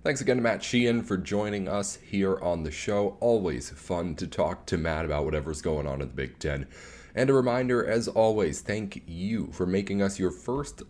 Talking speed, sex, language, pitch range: 210 wpm, male, English, 80-110 Hz